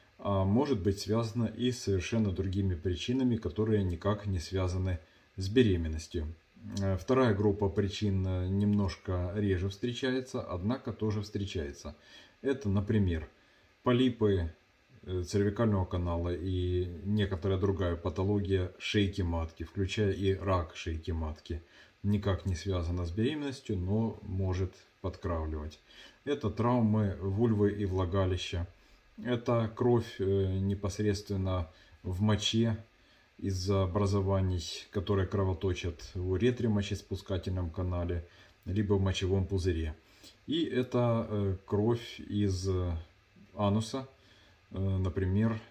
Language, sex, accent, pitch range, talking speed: Russian, male, native, 95-105 Hz, 100 wpm